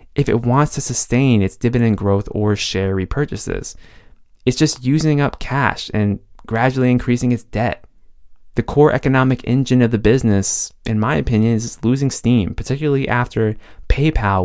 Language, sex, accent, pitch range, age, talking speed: English, male, American, 100-125 Hz, 20-39, 155 wpm